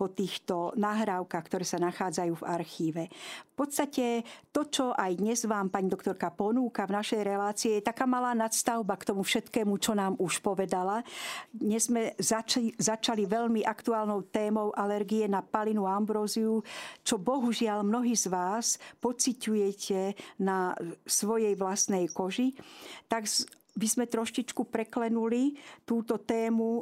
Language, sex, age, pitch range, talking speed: Slovak, female, 50-69, 195-235 Hz, 135 wpm